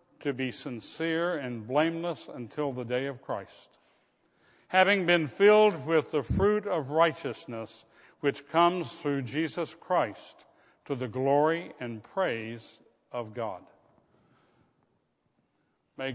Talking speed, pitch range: 115 wpm, 135-170 Hz